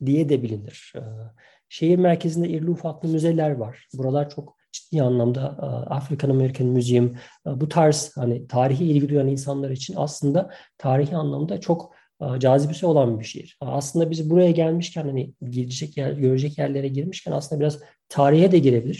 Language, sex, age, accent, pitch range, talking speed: Turkish, male, 40-59, native, 130-160 Hz, 145 wpm